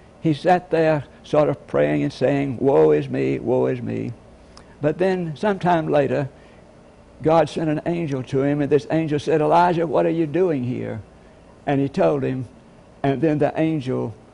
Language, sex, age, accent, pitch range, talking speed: English, male, 60-79, American, 130-165 Hz, 175 wpm